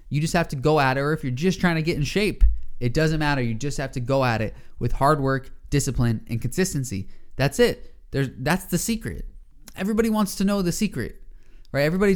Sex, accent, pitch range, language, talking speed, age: male, American, 115-155 Hz, English, 225 wpm, 20-39